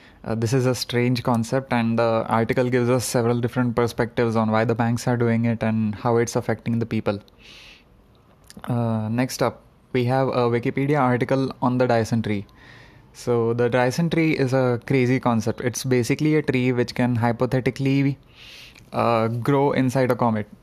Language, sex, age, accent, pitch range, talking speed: English, male, 20-39, Indian, 120-130 Hz, 170 wpm